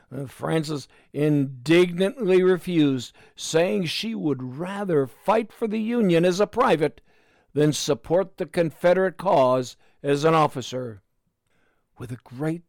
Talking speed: 120 wpm